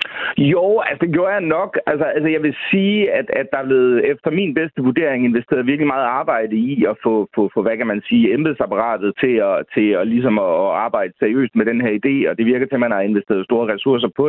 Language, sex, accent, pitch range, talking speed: Danish, male, native, 115-140 Hz, 235 wpm